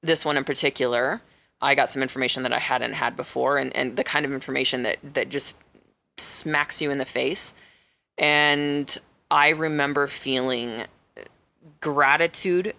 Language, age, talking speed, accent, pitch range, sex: English, 20-39, 150 wpm, American, 135-160 Hz, female